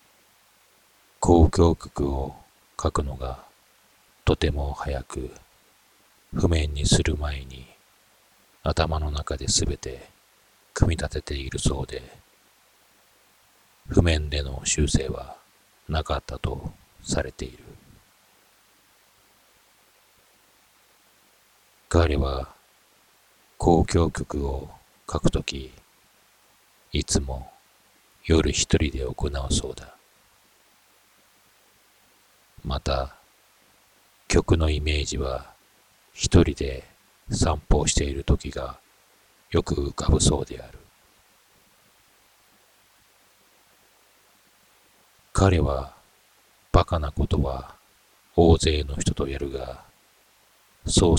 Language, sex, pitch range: Japanese, male, 70-85 Hz